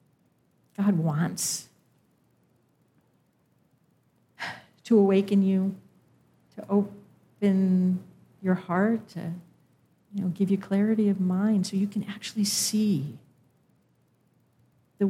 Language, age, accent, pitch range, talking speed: English, 50-69, American, 160-205 Hz, 90 wpm